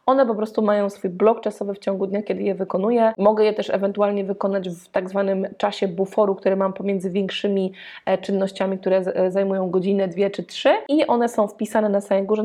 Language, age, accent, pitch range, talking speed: Polish, 20-39, native, 195-210 Hz, 195 wpm